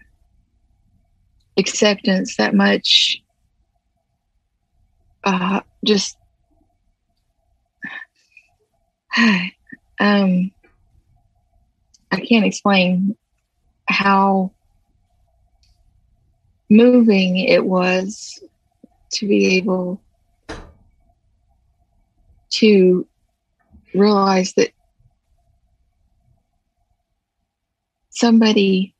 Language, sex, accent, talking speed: English, female, American, 40 wpm